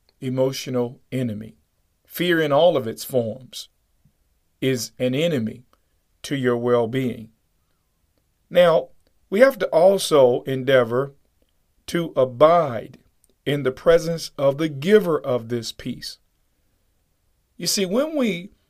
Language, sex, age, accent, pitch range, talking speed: English, male, 50-69, American, 110-150 Hz, 110 wpm